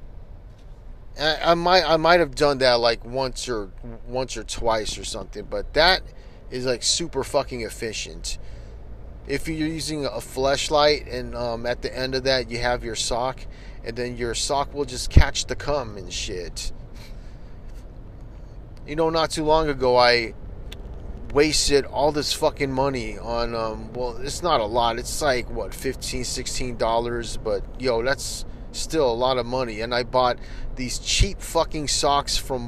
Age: 30-49